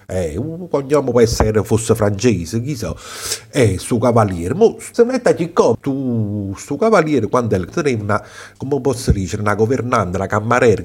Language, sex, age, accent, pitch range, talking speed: Italian, male, 50-69, native, 105-145 Hz, 155 wpm